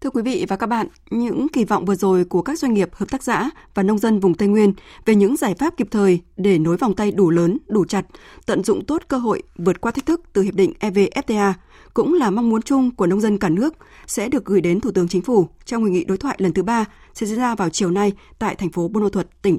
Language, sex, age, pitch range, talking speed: Vietnamese, female, 20-39, 190-245 Hz, 275 wpm